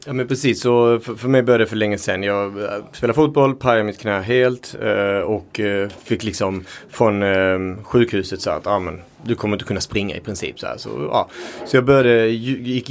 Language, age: Swedish, 30-49